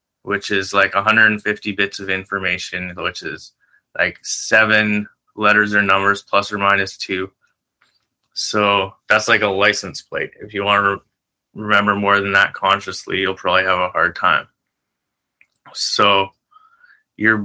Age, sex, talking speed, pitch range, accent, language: 20-39, male, 140 wpm, 100-110 Hz, American, English